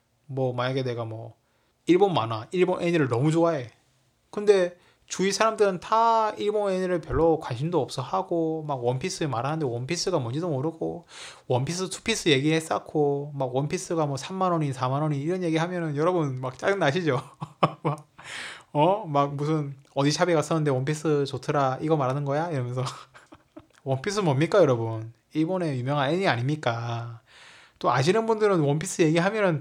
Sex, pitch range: male, 130-180 Hz